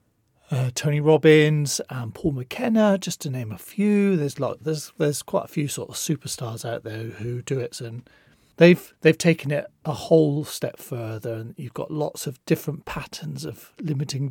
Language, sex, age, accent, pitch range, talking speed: English, male, 40-59, British, 130-165 Hz, 185 wpm